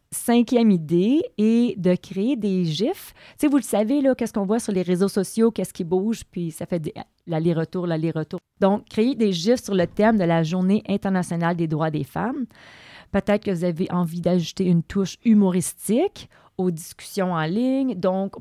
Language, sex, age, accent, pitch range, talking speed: French, female, 30-49, Canadian, 165-210 Hz, 185 wpm